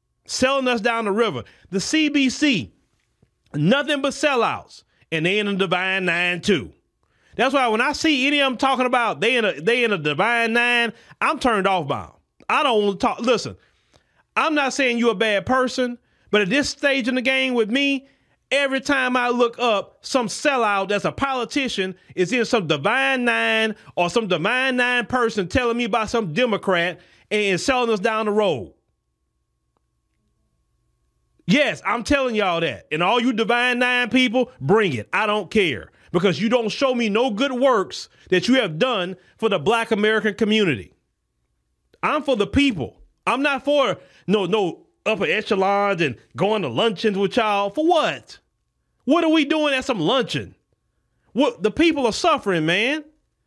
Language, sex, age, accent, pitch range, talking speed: English, male, 30-49, American, 195-270 Hz, 175 wpm